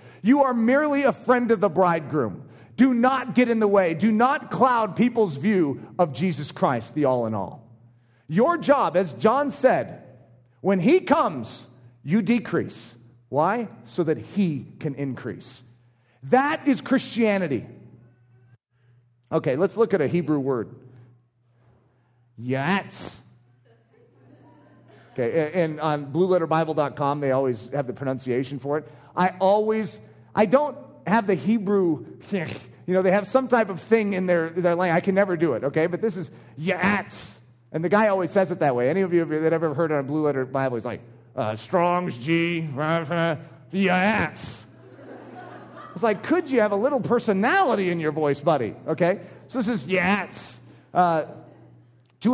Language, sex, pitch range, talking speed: English, male, 130-205 Hz, 155 wpm